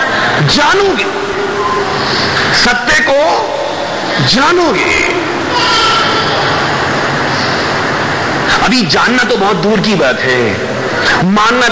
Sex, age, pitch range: male, 50-69, 175-245 Hz